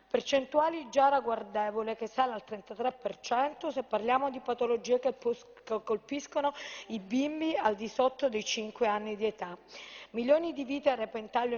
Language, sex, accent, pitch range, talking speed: Italian, female, native, 215-260 Hz, 145 wpm